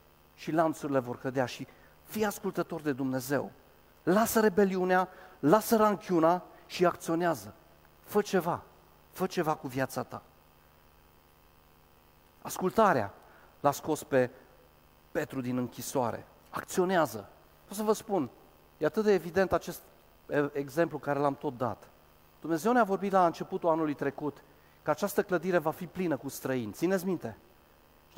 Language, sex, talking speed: Romanian, male, 130 wpm